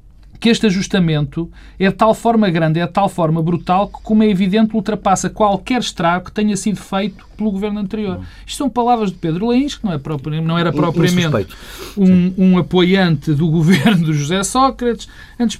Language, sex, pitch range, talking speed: Portuguese, male, 160-220 Hz, 190 wpm